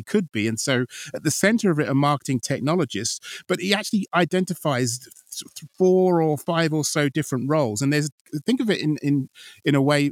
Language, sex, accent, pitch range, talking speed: English, male, British, 125-165 Hz, 195 wpm